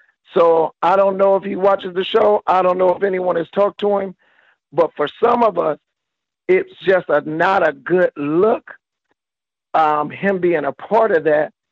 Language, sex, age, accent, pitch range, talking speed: English, male, 50-69, American, 160-195 Hz, 190 wpm